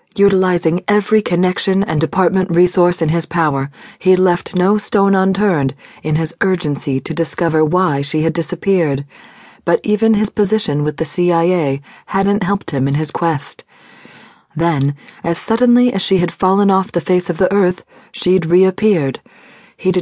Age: 40-59